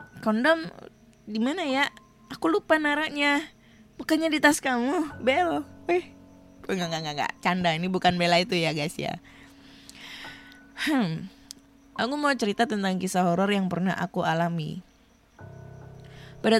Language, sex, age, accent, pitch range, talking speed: Indonesian, female, 20-39, native, 175-235 Hz, 135 wpm